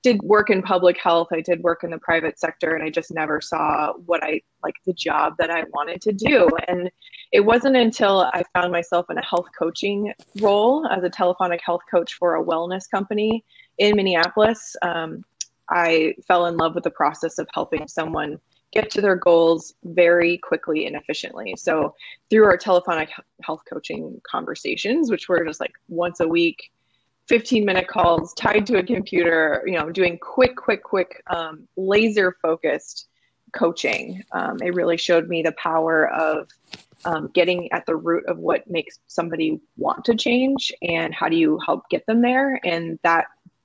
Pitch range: 165-205 Hz